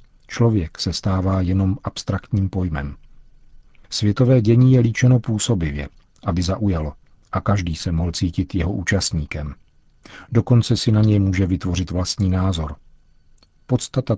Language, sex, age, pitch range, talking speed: Czech, male, 40-59, 90-105 Hz, 125 wpm